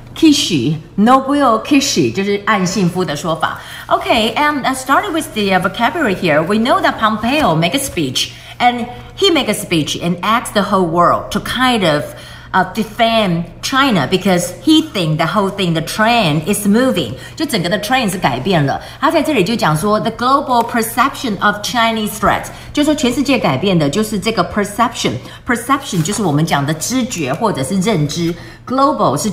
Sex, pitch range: female, 165-235 Hz